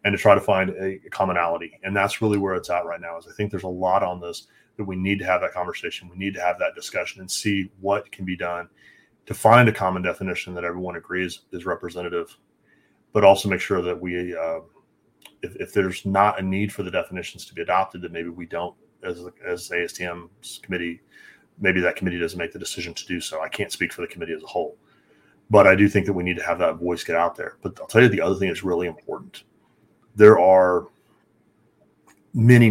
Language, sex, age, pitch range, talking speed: English, male, 30-49, 90-100 Hz, 230 wpm